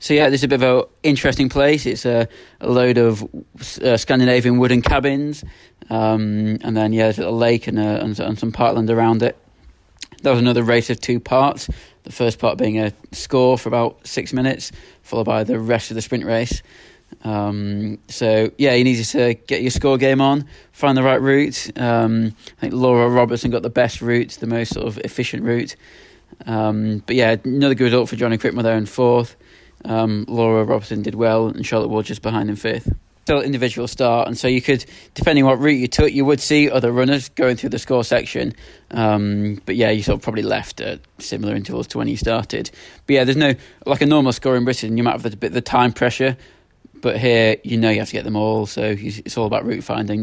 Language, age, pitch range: English, 20-39, 110-130 Hz